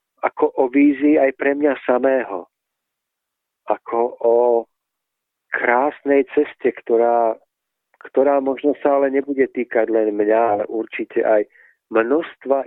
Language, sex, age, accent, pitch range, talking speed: Czech, male, 50-69, native, 115-150 Hz, 115 wpm